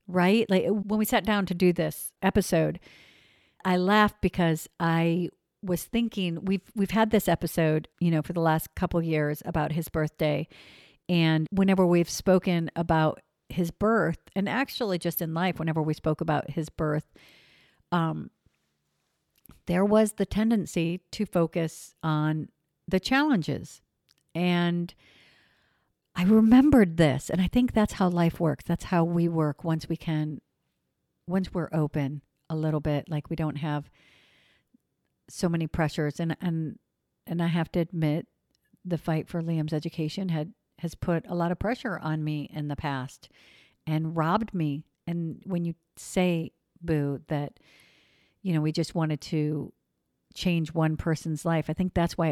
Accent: American